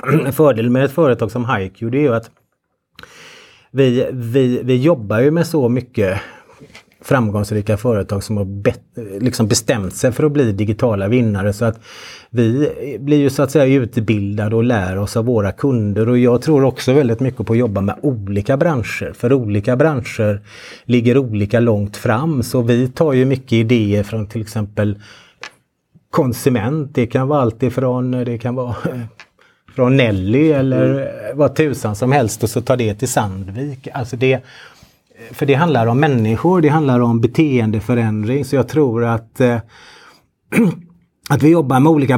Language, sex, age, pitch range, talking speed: Swedish, male, 30-49, 115-140 Hz, 165 wpm